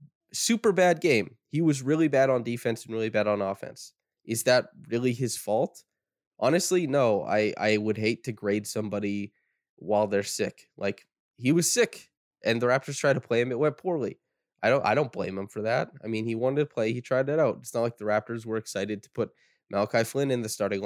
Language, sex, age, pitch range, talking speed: English, male, 20-39, 110-145 Hz, 220 wpm